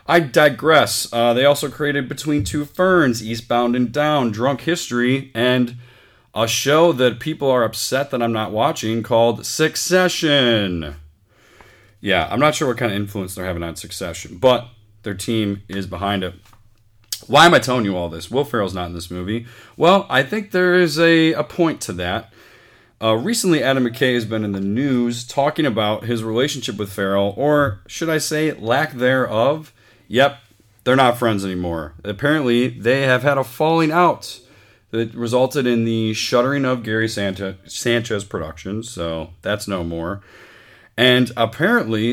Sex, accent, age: male, American, 30-49